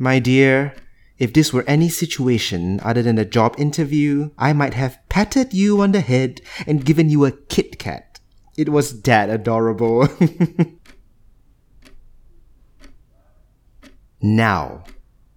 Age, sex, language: 30-49, male, English